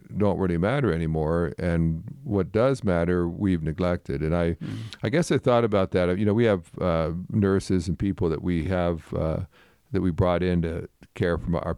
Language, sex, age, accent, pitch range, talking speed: English, male, 50-69, American, 80-100 Hz, 190 wpm